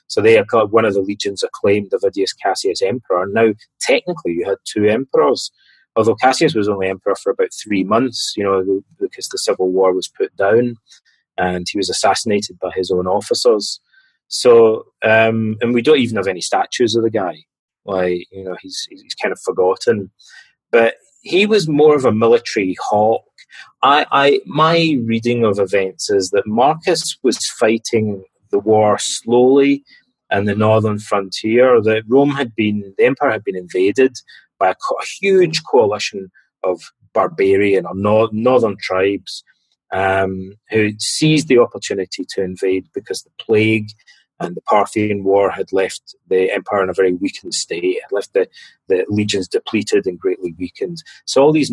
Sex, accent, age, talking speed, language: male, British, 30-49, 170 wpm, English